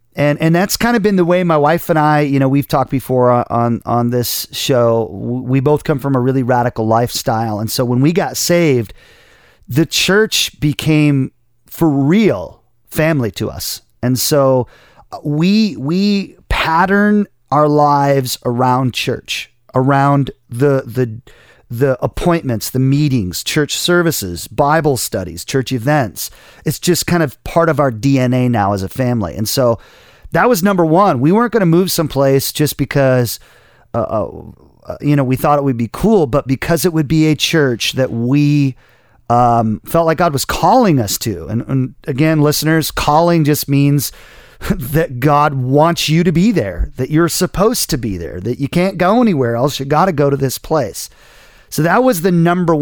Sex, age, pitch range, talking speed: male, 40-59, 125-160 Hz, 175 wpm